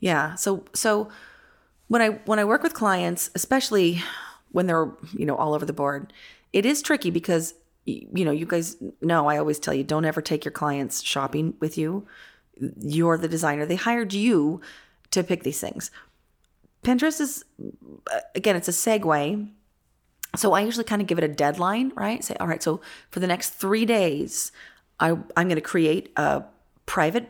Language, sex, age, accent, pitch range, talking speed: English, female, 30-49, American, 160-210 Hz, 180 wpm